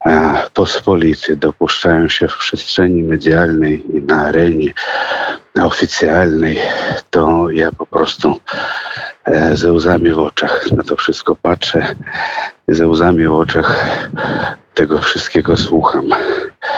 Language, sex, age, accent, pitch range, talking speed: Polish, male, 50-69, native, 80-90 Hz, 105 wpm